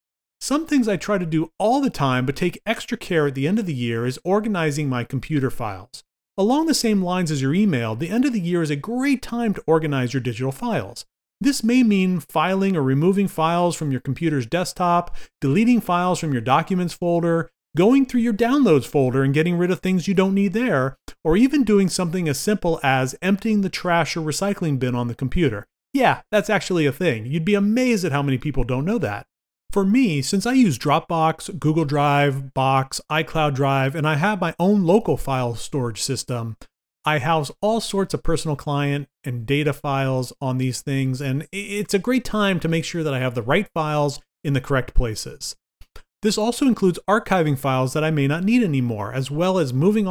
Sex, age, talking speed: male, 30-49, 205 wpm